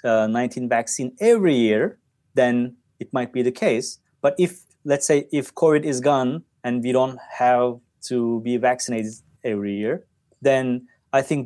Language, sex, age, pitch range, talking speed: English, male, 30-49, 120-145 Hz, 160 wpm